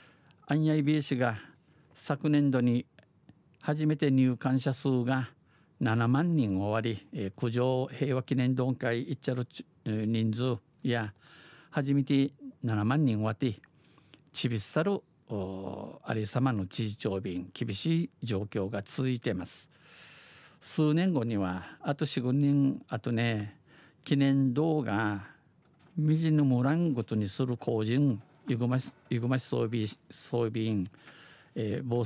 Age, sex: 50-69, male